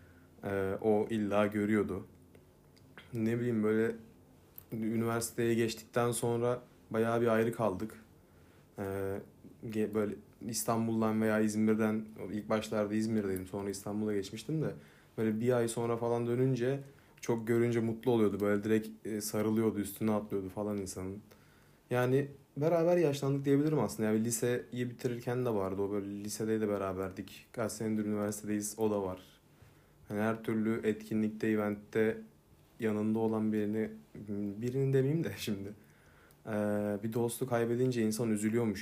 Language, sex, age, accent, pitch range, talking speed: Turkish, male, 30-49, native, 105-120 Hz, 115 wpm